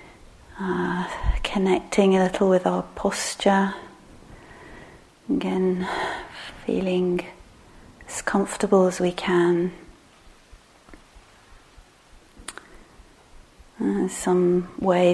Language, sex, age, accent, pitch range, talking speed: English, female, 30-49, British, 180-205 Hz, 65 wpm